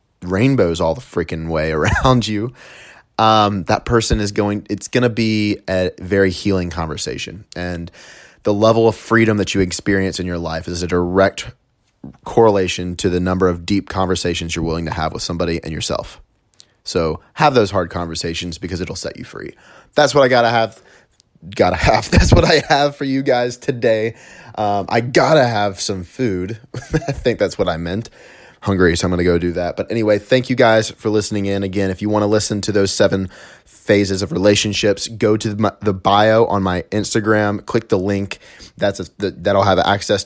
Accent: American